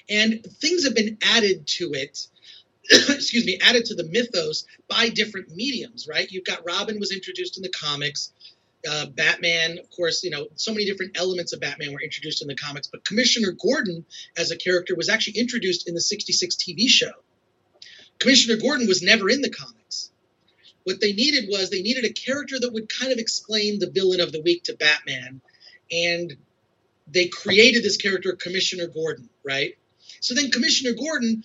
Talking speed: 180 wpm